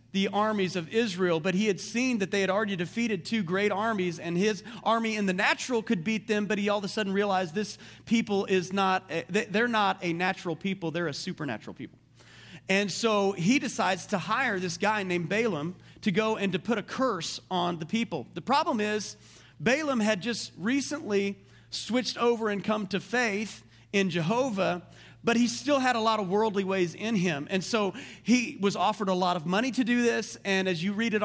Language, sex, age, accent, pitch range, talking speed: English, male, 40-59, American, 180-220 Hz, 205 wpm